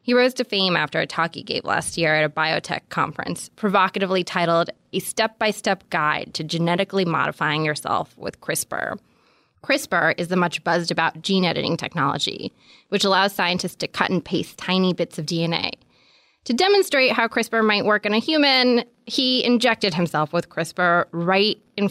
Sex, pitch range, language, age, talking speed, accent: female, 165-215 Hz, English, 20-39, 165 wpm, American